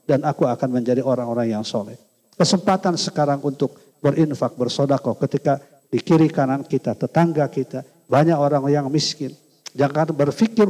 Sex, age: male, 50-69